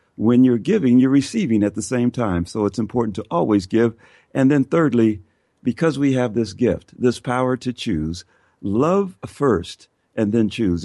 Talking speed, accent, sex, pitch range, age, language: 175 wpm, American, male, 100-135 Hz, 50-69, English